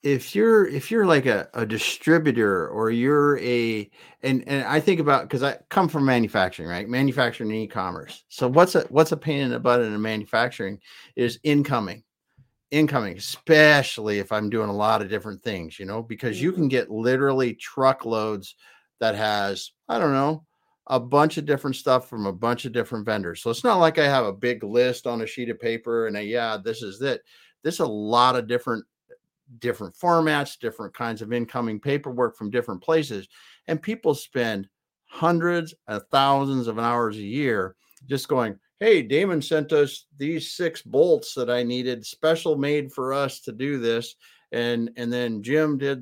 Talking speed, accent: 185 wpm, American